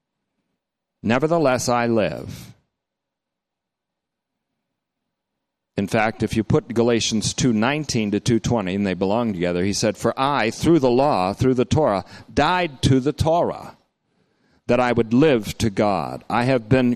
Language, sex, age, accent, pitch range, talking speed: English, male, 40-59, American, 105-145 Hz, 140 wpm